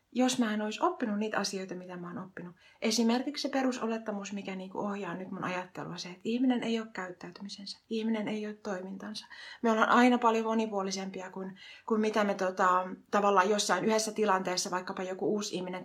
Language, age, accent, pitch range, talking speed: Finnish, 30-49, native, 185-225 Hz, 185 wpm